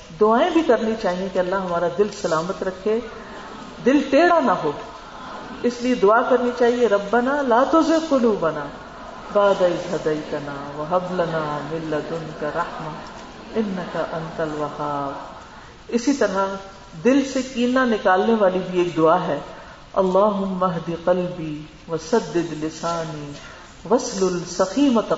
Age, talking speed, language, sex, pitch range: 50-69, 105 wpm, Urdu, female, 170-240 Hz